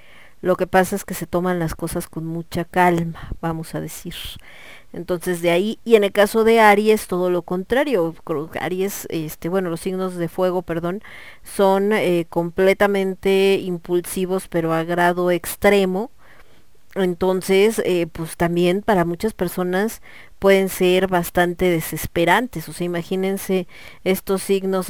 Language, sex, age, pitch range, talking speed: Spanish, female, 40-59, 180-215 Hz, 140 wpm